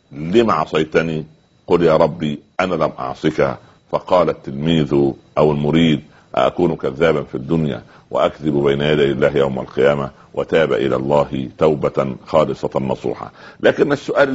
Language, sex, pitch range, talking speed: Arabic, male, 80-115 Hz, 125 wpm